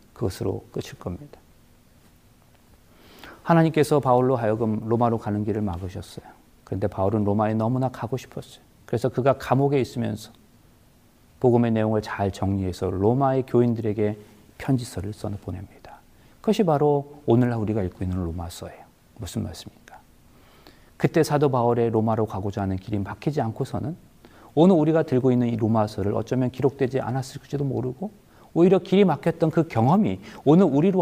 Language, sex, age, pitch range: Korean, male, 40-59, 110-175 Hz